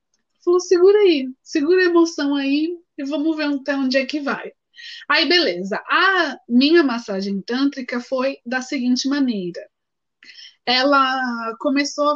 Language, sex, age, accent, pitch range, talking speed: Portuguese, female, 20-39, Brazilian, 245-310 Hz, 135 wpm